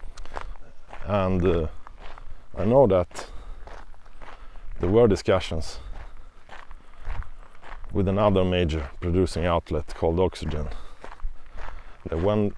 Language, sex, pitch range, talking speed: English, male, 80-95 Hz, 80 wpm